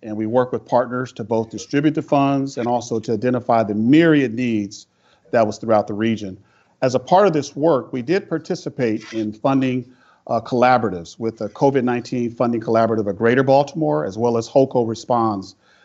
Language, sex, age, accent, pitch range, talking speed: English, male, 40-59, American, 115-140 Hz, 180 wpm